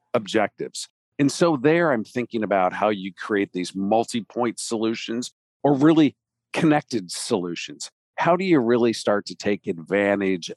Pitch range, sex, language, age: 100-125 Hz, male, English, 50-69